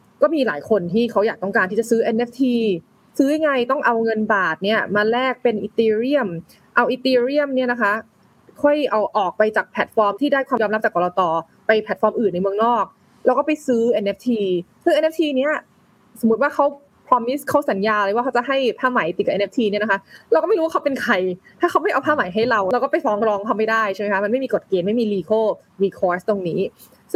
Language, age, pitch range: Thai, 20-39, 195-250 Hz